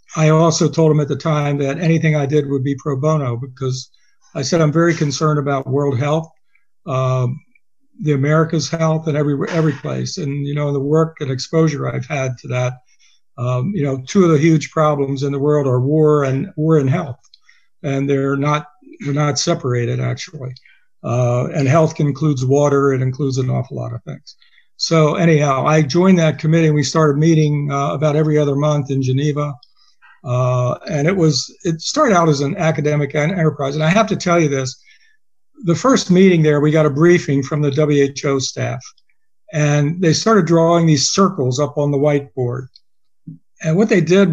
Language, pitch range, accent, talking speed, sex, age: English, 140-160 Hz, American, 190 wpm, male, 60-79